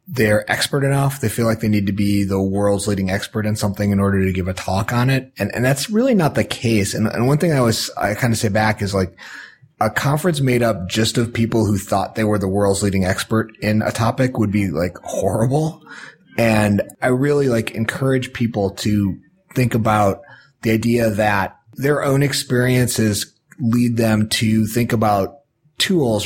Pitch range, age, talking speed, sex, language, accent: 100-125 Hz, 30-49, 200 wpm, male, English, American